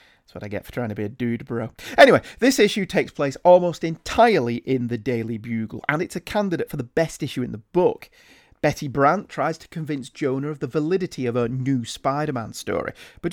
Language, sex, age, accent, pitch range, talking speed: English, male, 40-59, British, 130-180 Hz, 215 wpm